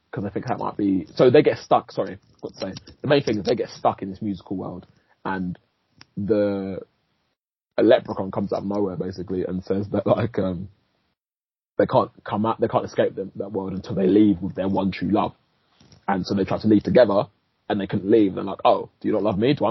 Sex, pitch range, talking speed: male, 95-115 Hz, 240 wpm